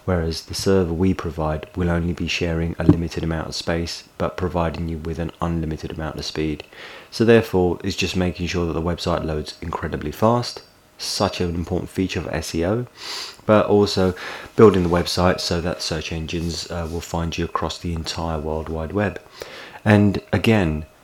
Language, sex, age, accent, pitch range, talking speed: English, male, 30-49, British, 80-95 Hz, 175 wpm